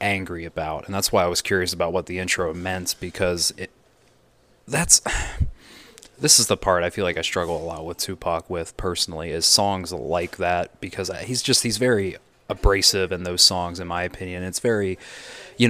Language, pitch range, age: English, 90-105 Hz, 20-39